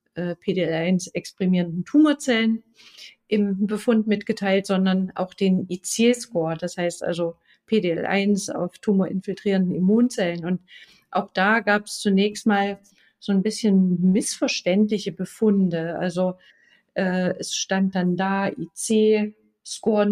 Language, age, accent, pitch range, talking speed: German, 50-69, German, 180-215 Hz, 105 wpm